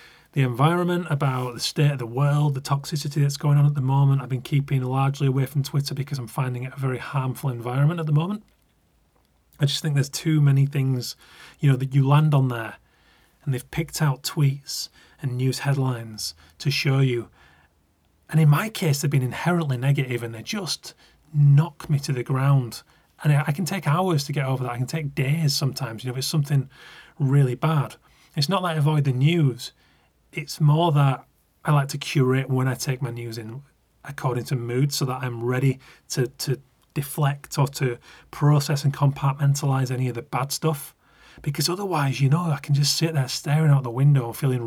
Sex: male